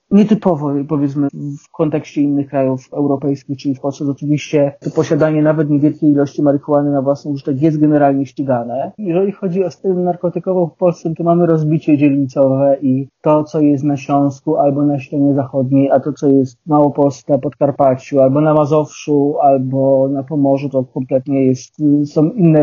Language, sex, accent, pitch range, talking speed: Polish, male, native, 140-160 Hz, 170 wpm